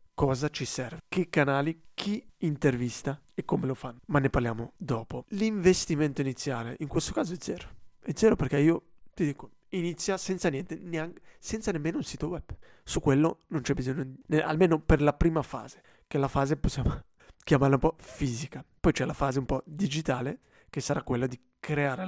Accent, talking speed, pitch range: native, 185 wpm, 135-170 Hz